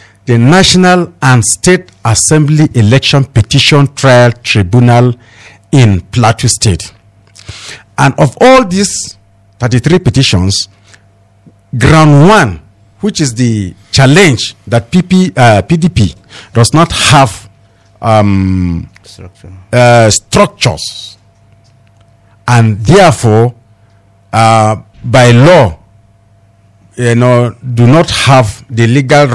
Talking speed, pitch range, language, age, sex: 90 wpm, 100-130 Hz, English, 50-69, male